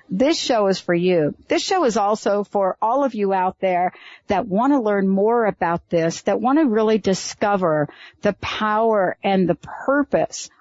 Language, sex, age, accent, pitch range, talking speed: English, female, 50-69, American, 185-235 Hz, 180 wpm